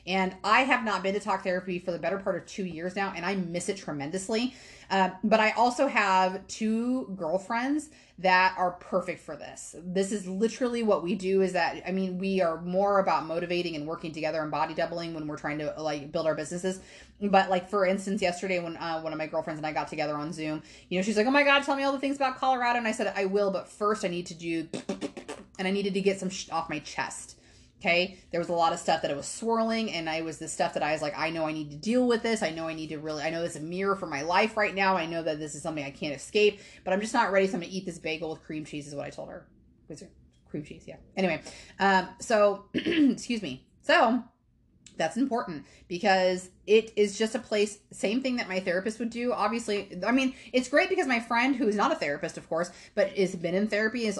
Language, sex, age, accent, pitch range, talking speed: English, female, 30-49, American, 165-220 Hz, 255 wpm